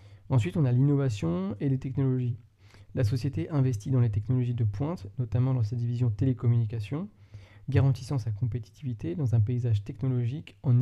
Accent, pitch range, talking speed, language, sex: French, 105-130 Hz, 155 wpm, French, male